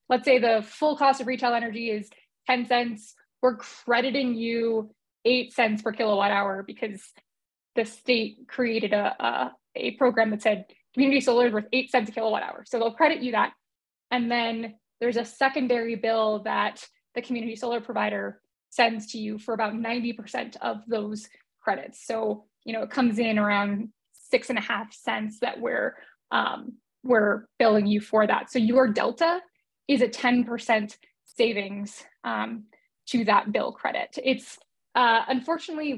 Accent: American